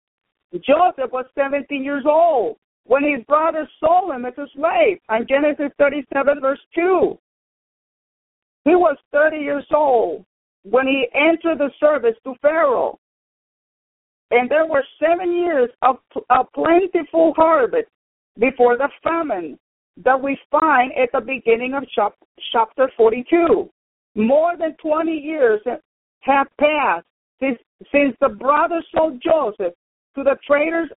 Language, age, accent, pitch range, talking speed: English, 50-69, American, 265-330 Hz, 130 wpm